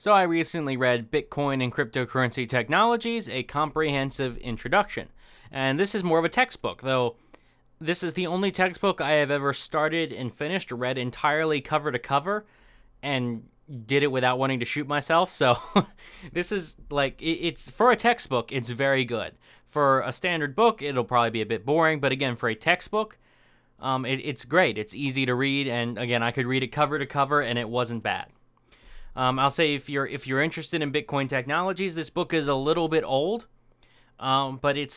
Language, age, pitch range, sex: English, 20-39, 125-155 Hz, male